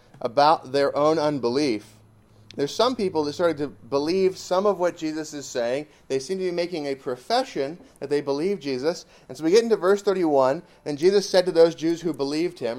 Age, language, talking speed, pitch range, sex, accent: 30-49, English, 205 wpm, 135-165 Hz, male, American